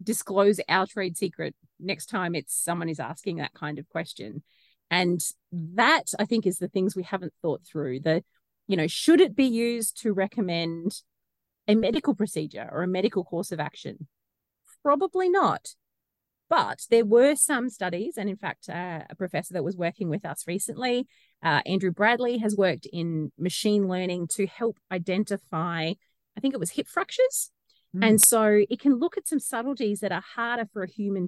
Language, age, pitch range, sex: English, 30-49, 170-225 Hz, female